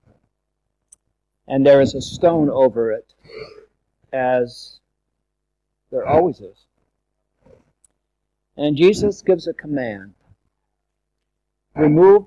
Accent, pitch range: American, 130-170 Hz